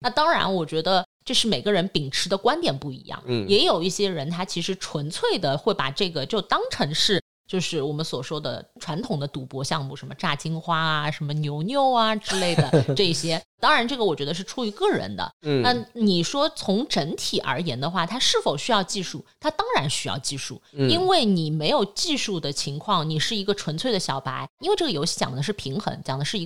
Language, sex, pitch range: Chinese, female, 150-215 Hz